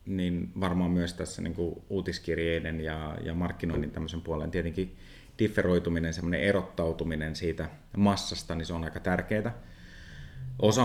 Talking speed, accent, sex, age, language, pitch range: 125 wpm, native, male, 30-49, Finnish, 85-95 Hz